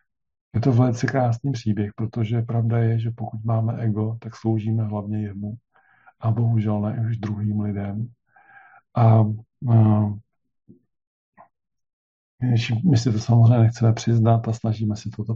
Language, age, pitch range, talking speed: Czech, 50-69, 105-115 Hz, 140 wpm